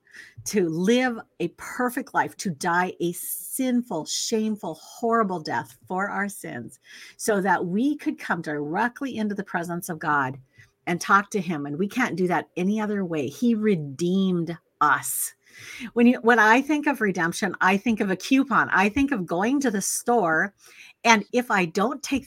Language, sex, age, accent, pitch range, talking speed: English, female, 50-69, American, 175-235 Hz, 175 wpm